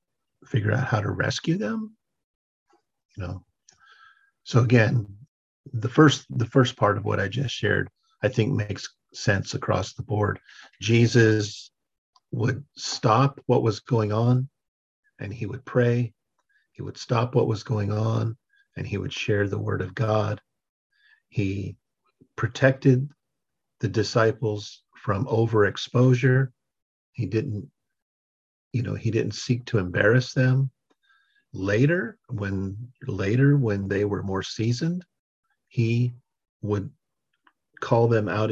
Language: English